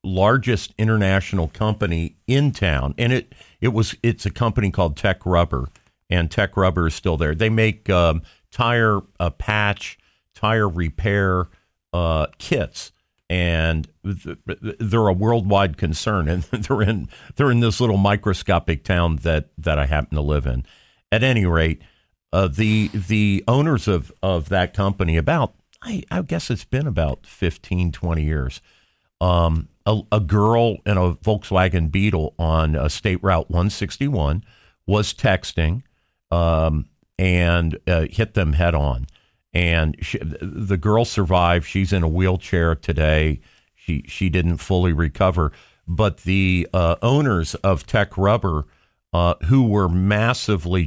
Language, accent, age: English, American, 50-69